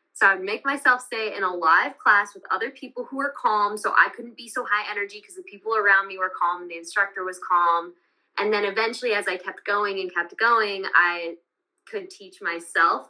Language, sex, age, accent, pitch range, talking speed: English, female, 10-29, American, 180-290 Hz, 215 wpm